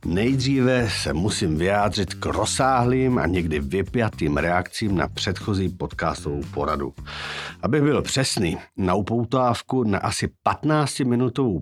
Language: Czech